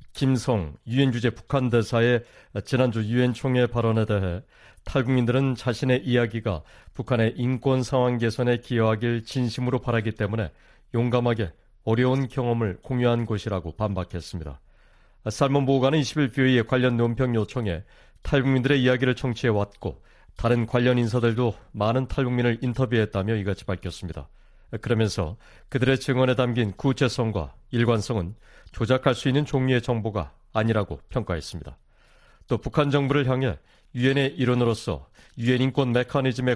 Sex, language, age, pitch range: male, Korean, 40-59, 110-130 Hz